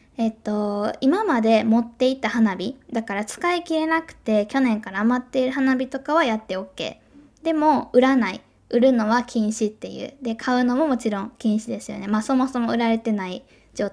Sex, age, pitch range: female, 10-29, 215-270 Hz